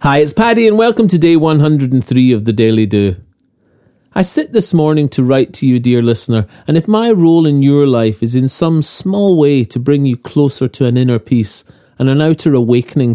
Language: English